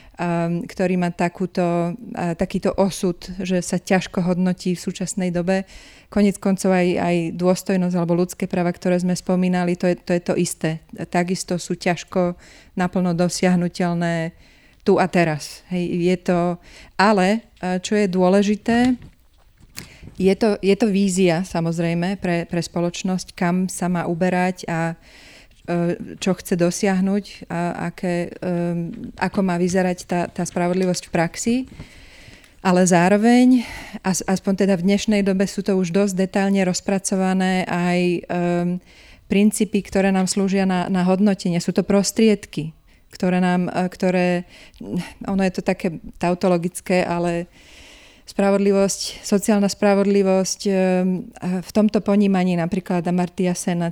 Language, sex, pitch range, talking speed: Slovak, female, 175-195 Hz, 130 wpm